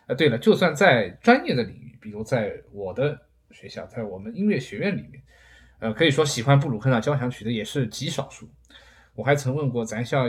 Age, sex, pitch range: 20-39, male, 110-140 Hz